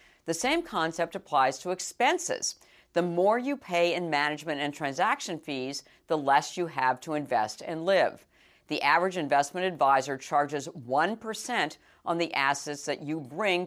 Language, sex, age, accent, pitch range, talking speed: English, female, 50-69, American, 140-180 Hz, 155 wpm